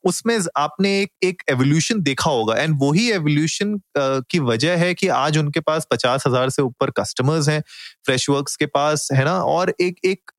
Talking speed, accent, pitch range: 170 wpm, native, 135-175 Hz